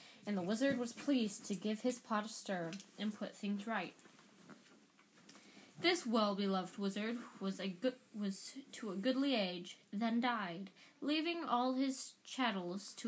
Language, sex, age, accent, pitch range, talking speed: English, female, 10-29, American, 200-245 Hz, 140 wpm